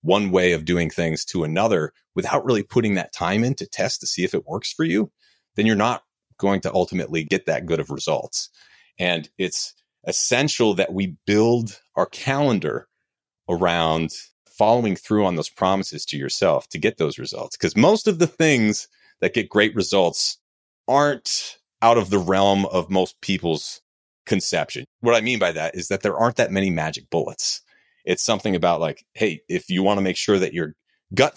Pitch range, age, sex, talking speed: 90-115 Hz, 30-49, male, 185 wpm